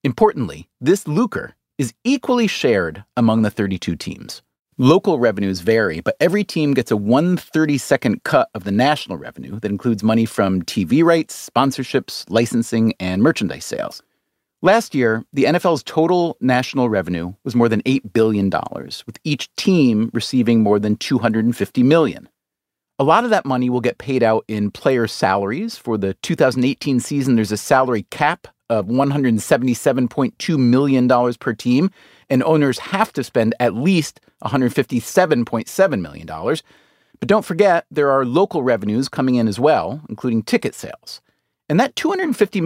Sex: male